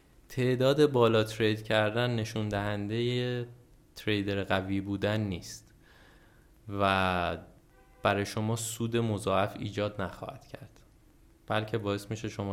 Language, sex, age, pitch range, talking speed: Persian, male, 20-39, 100-125 Hz, 105 wpm